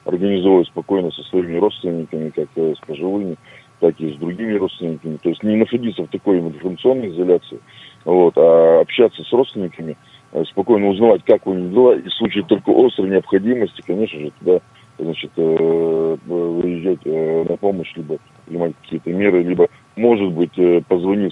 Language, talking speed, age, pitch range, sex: Russian, 145 wpm, 30-49, 85-100 Hz, male